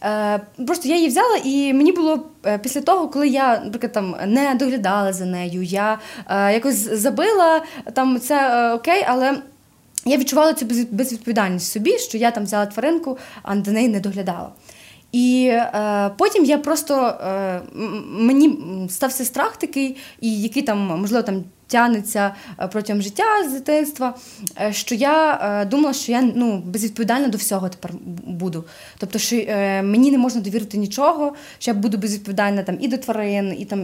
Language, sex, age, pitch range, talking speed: Ukrainian, female, 20-39, 205-270 Hz, 155 wpm